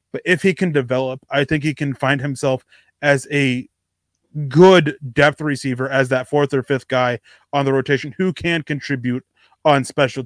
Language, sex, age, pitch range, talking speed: English, male, 30-49, 125-150 Hz, 175 wpm